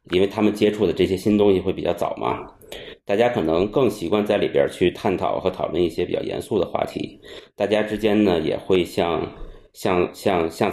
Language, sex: Chinese, male